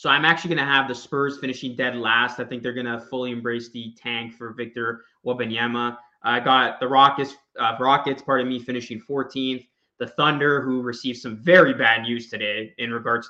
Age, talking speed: 20-39, 205 wpm